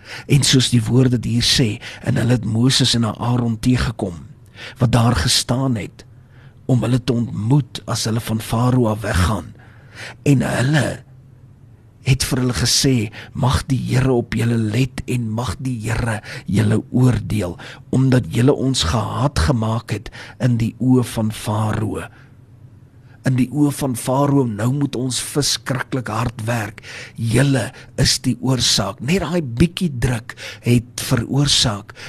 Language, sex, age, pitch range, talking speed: English, male, 40-59, 115-130 Hz, 140 wpm